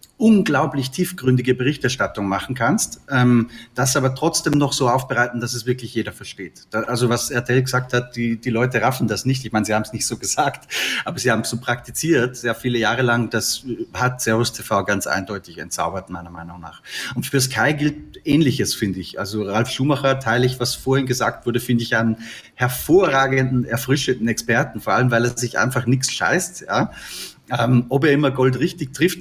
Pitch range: 115-135 Hz